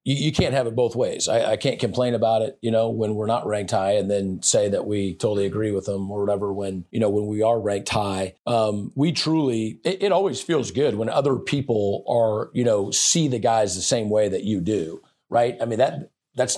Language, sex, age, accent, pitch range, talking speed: English, male, 40-59, American, 105-135 Hz, 245 wpm